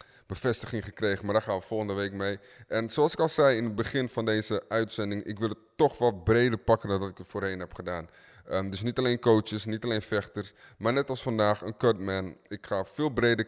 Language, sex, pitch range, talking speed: Dutch, male, 95-120 Hz, 230 wpm